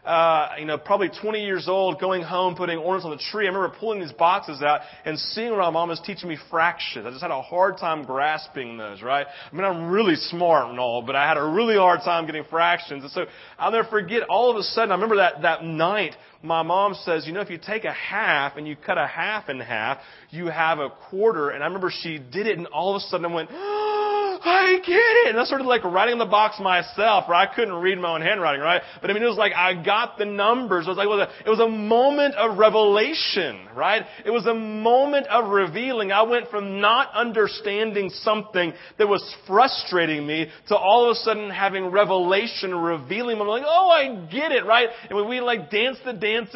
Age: 30-49